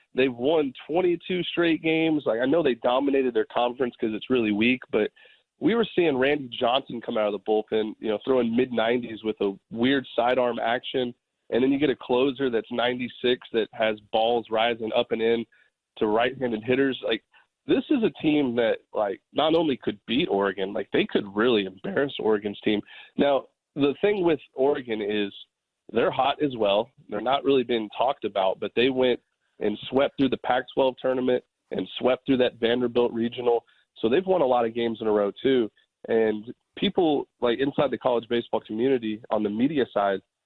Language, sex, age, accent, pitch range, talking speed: English, male, 30-49, American, 110-135 Hz, 190 wpm